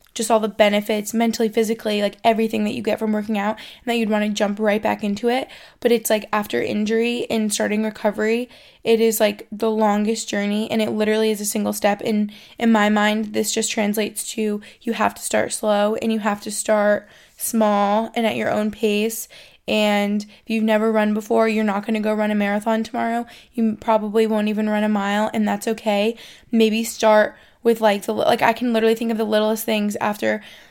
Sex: female